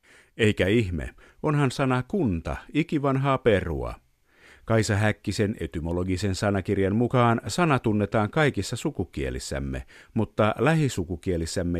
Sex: male